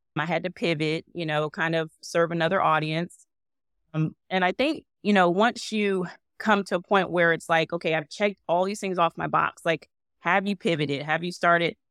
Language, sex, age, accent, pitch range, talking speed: English, female, 20-39, American, 155-180 Hz, 210 wpm